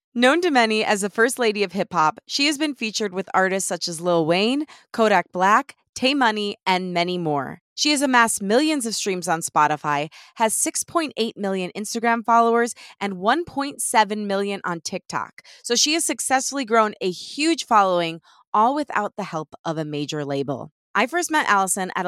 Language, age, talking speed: English, 20-39, 175 wpm